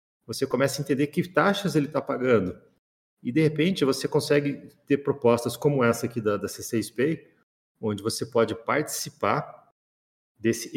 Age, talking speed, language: 40-59, 160 wpm, Portuguese